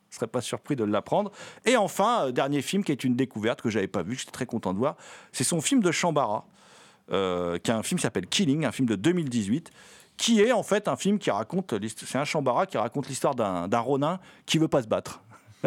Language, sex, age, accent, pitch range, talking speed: French, male, 40-59, French, 135-210 Hz, 255 wpm